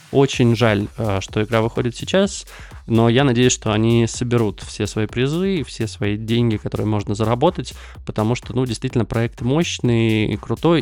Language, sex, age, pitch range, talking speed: Russian, male, 20-39, 100-120 Hz, 160 wpm